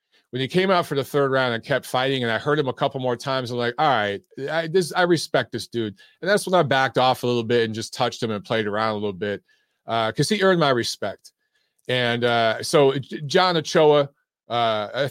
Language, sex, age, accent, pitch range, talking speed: English, male, 30-49, American, 110-140 Hz, 240 wpm